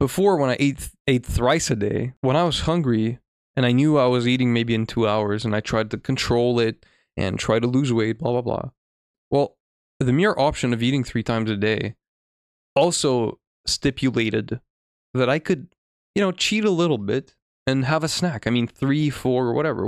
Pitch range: 110-135 Hz